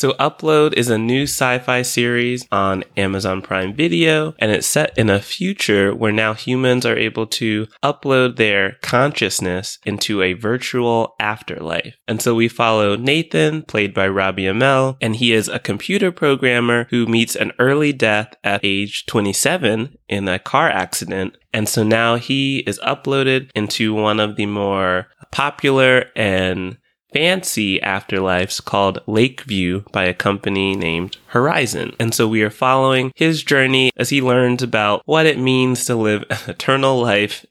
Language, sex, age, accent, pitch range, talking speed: English, male, 20-39, American, 100-130 Hz, 155 wpm